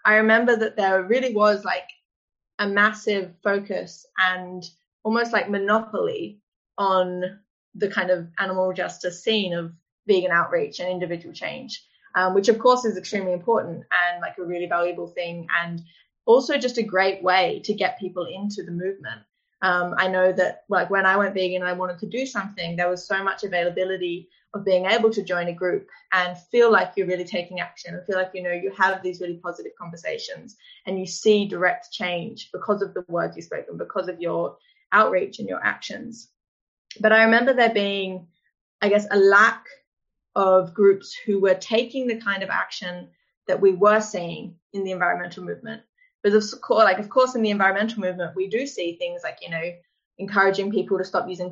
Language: English